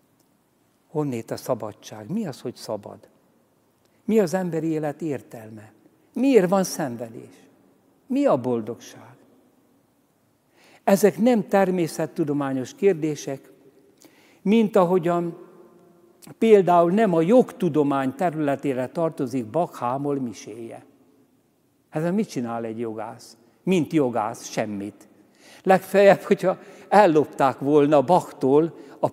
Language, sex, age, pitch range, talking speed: Hungarian, male, 60-79, 130-180 Hz, 95 wpm